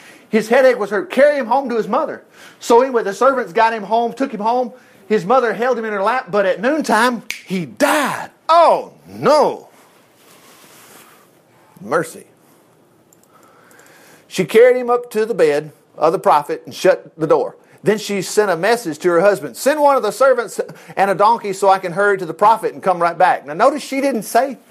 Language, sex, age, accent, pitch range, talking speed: English, male, 50-69, American, 190-255 Hz, 195 wpm